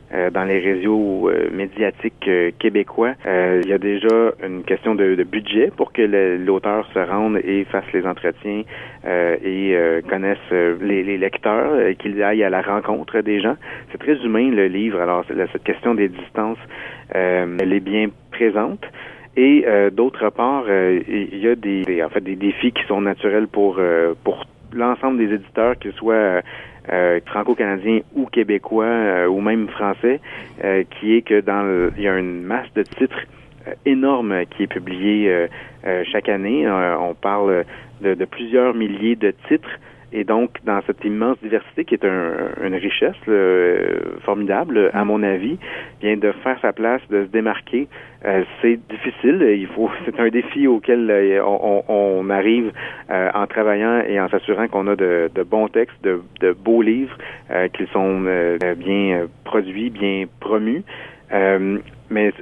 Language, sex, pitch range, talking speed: French, male, 95-110 Hz, 175 wpm